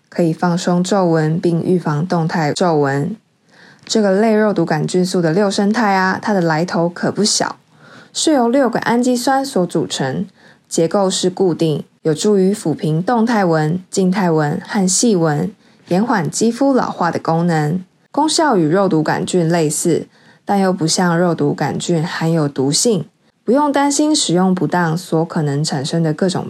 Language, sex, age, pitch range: Chinese, female, 20-39, 160-215 Hz